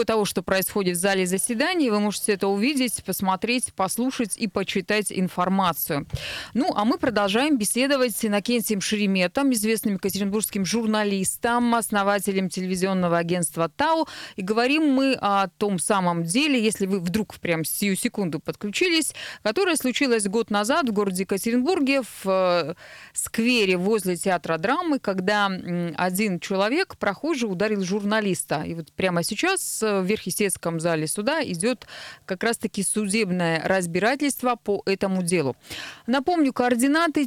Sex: female